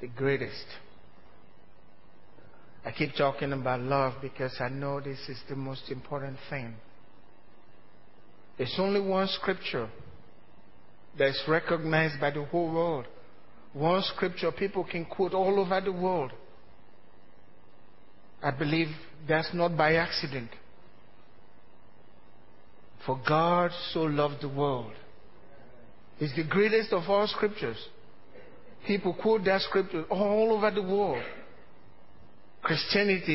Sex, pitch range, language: male, 140-190 Hz, English